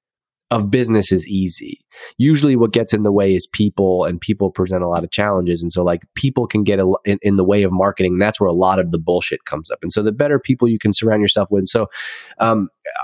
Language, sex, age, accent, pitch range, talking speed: English, male, 20-39, American, 100-115 Hz, 260 wpm